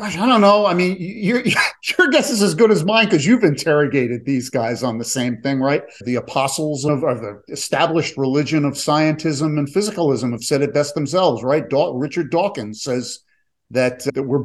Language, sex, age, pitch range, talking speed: English, male, 50-69, 130-175 Hz, 200 wpm